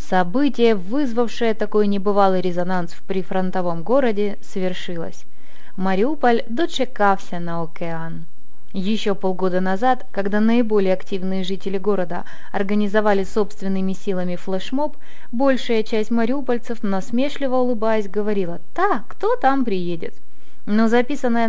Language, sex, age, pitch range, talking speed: Russian, female, 20-39, 190-245 Hz, 105 wpm